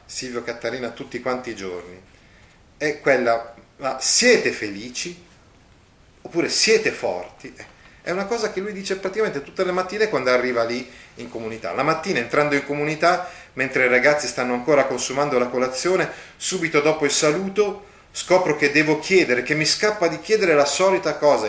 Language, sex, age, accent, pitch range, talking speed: Italian, male, 30-49, native, 115-170 Hz, 160 wpm